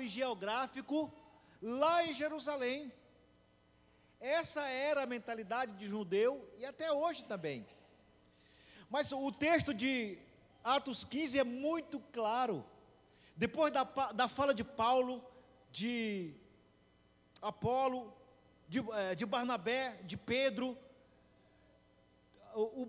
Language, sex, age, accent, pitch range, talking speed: Portuguese, male, 40-59, Brazilian, 205-280 Hz, 95 wpm